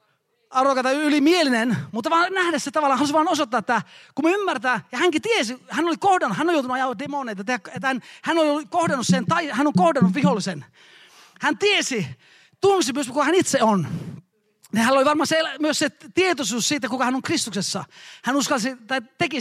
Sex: male